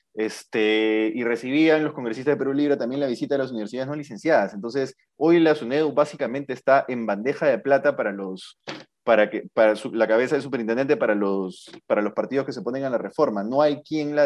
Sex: male